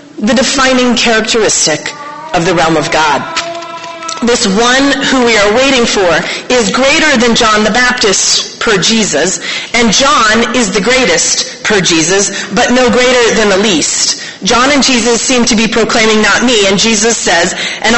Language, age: English, 30-49